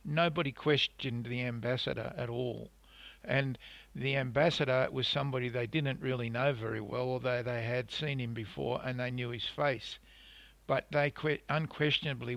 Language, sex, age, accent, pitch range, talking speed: English, male, 50-69, Australian, 120-140 Hz, 150 wpm